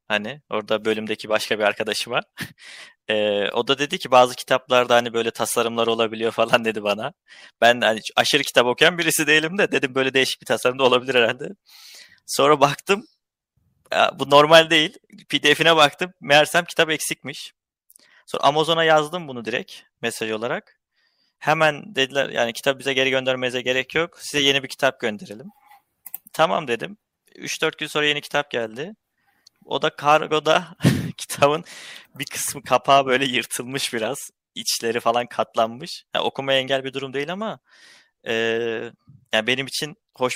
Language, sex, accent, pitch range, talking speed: Turkish, male, native, 115-150 Hz, 150 wpm